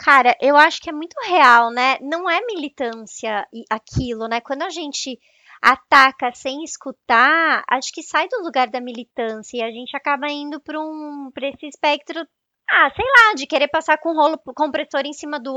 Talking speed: 190 wpm